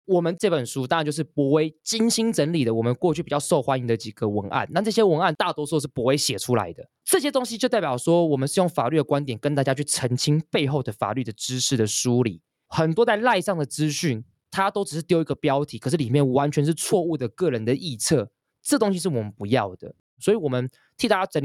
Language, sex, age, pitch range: Chinese, male, 20-39, 115-155 Hz